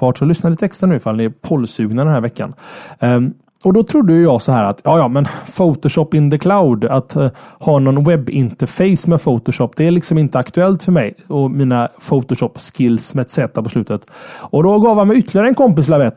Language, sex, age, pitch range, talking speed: Swedish, male, 30-49, 125-180 Hz, 210 wpm